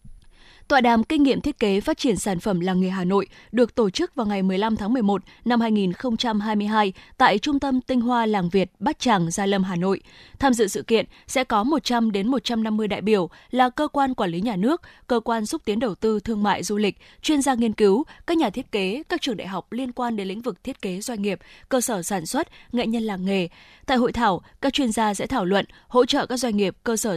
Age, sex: 20-39, female